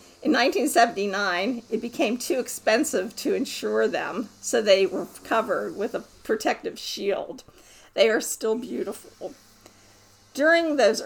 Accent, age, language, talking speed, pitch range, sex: American, 50-69, English, 125 wpm, 195-270 Hz, female